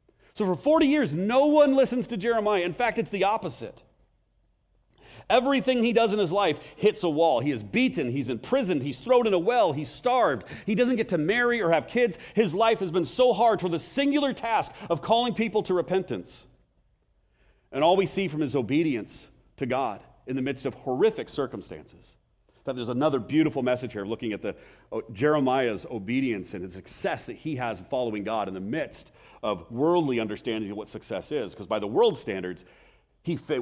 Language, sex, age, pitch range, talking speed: English, male, 40-59, 130-185 Hz, 195 wpm